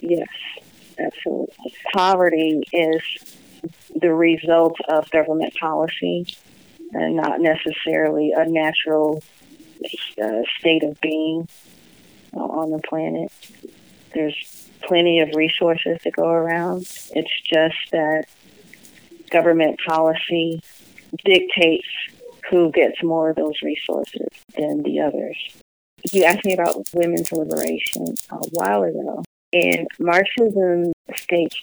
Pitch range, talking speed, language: 155-175 Hz, 105 wpm, English